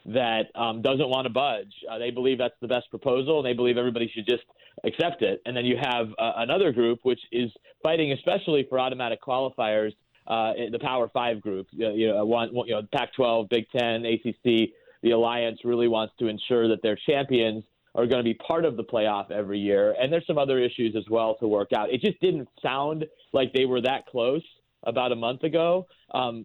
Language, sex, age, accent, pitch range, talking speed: English, male, 30-49, American, 115-140 Hz, 205 wpm